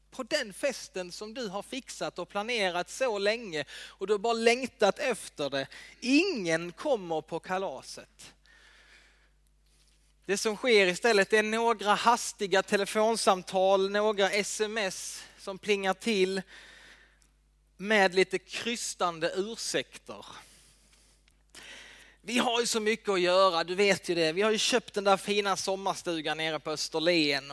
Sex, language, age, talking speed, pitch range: male, Swedish, 20-39, 135 wpm, 170-220 Hz